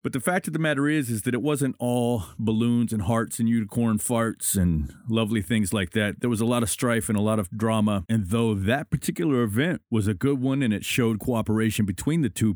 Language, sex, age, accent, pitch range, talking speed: English, male, 40-59, American, 105-130 Hz, 240 wpm